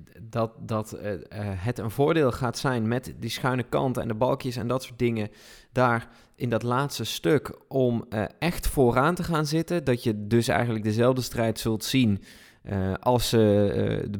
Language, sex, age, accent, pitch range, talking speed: Dutch, male, 20-39, Dutch, 110-130 Hz, 180 wpm